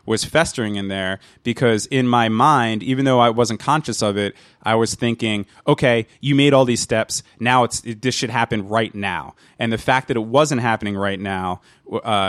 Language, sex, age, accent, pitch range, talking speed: English, male, 20-39, American, 105-125 Hz, 205 wpm